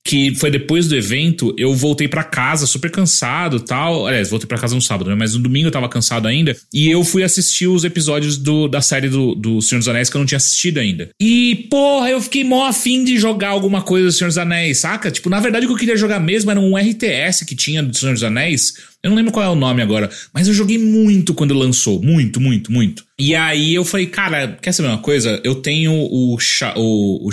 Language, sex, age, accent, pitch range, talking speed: English, male, 30-49, Brazilian, 125-185 Hz, 235 wpm